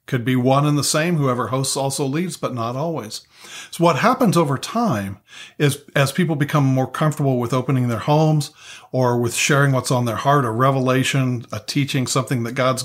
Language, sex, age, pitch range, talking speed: English, male, 50-69, 125-145 Hz, 195 wpm